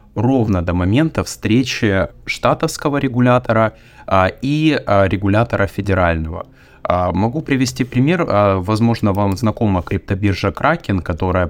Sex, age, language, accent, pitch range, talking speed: male, 20-39, Russian, native, 95-120 Hz, 115 wpm